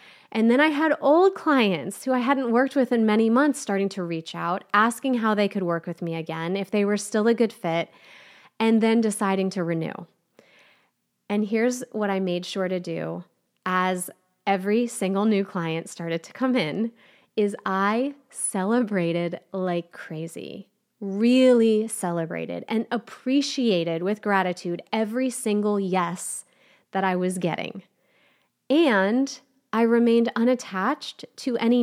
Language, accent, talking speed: English, American, 150 wpm